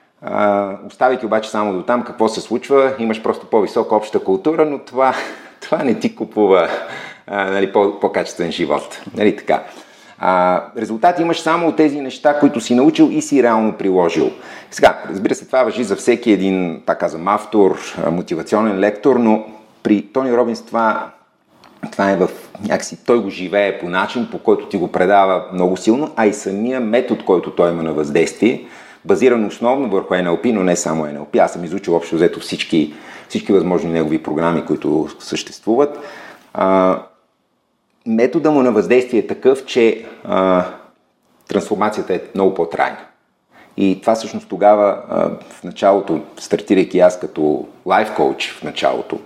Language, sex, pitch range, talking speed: Bulgarian, male, 95-125 Hz, 155 wpm